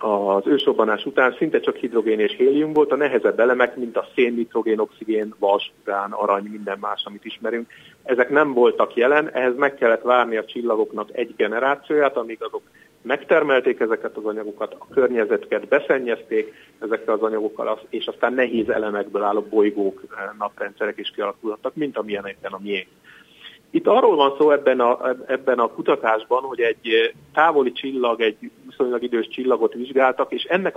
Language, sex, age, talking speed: Hungarian, male, 30-49, 155 wpm